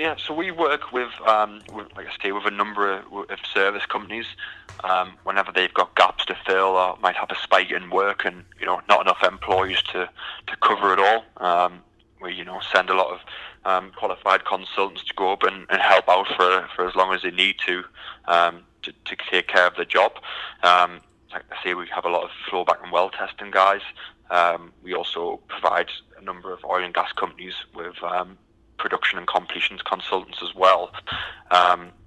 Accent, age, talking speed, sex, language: British, 20-39, 200 wpm, male, English